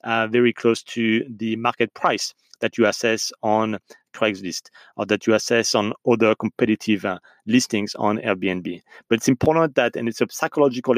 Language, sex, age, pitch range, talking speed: English, male, 30-49, 105-120 Hz, 170 wpm